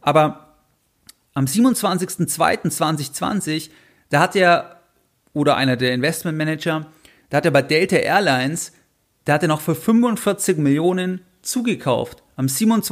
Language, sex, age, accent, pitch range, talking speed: German, male, 40-59, German, 135-165 Hz, 115 wpm